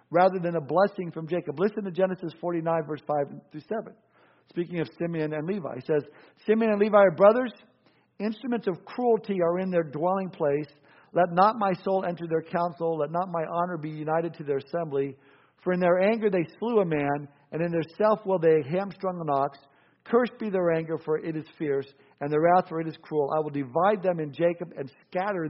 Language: English